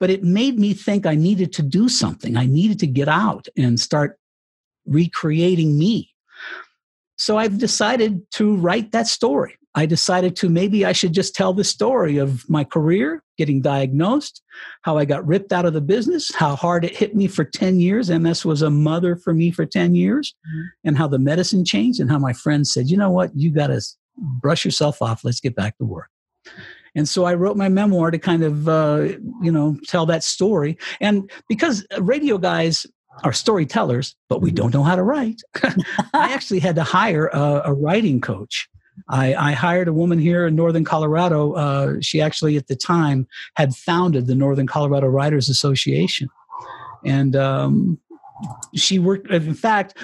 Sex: male